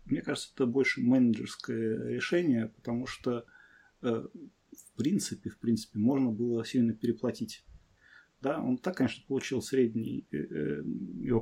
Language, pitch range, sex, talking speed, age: Russian, 115-135 Hz, male, 125 wpm, 30-49